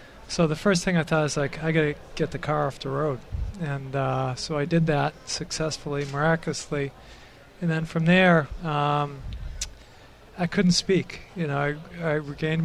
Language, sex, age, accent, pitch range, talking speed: English, male, 40-59, American, 140-165 Hz, 180 wpm